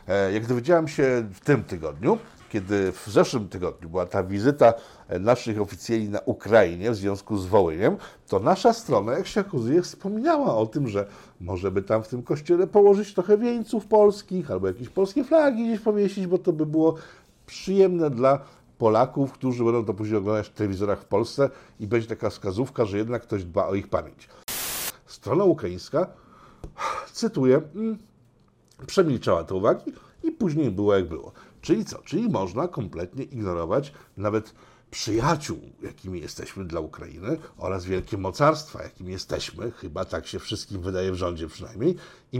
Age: 50-69